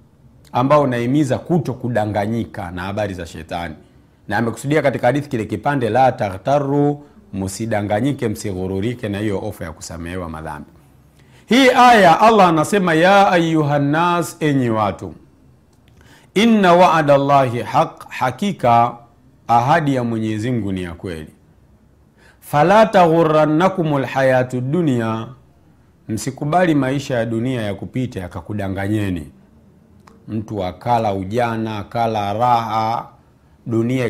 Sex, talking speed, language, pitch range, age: male, 105 wpm, Swahili, 105-165 Hz, 50-69